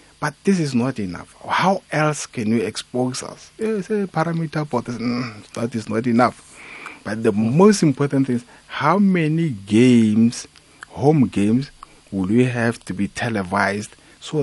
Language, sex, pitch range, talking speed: English, male, 110-140 Hz, 155 wpm